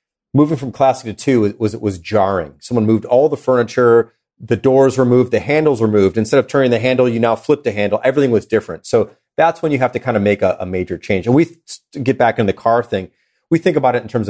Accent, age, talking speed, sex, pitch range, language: American, 40-59, 250 wpm, male, 105-130 Hz, English